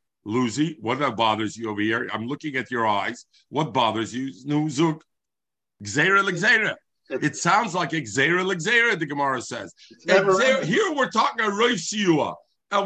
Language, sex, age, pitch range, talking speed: English, male, 50-69, 125-190 Hz, 145 wpm